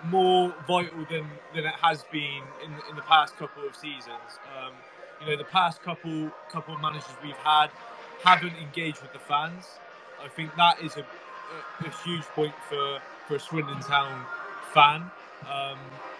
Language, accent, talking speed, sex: English, British, 170 wpm, male